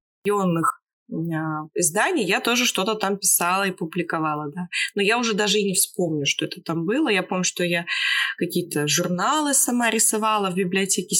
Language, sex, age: Russian, female, 20-39